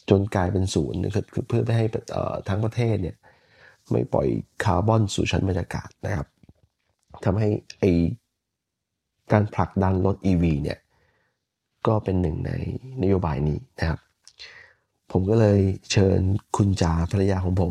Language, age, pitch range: Thai, 20-39, 90-115 Hz